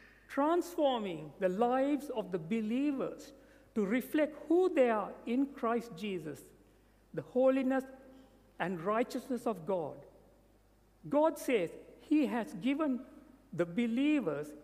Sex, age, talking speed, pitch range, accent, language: male, 60-79, 110 wpm, 225-280 Hz, Indian, English